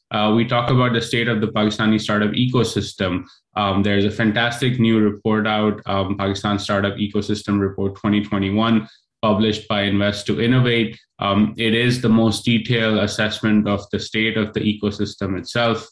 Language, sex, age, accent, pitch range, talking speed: English, male, 20-39, Indian, 105-115 Hz, 160 wpm